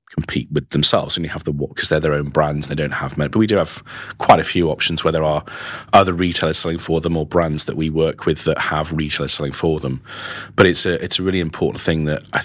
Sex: male